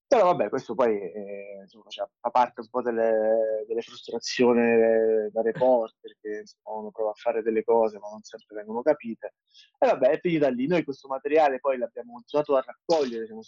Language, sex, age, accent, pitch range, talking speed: Italian, male, 20-39, native, 110-135 Hz, 185 wpm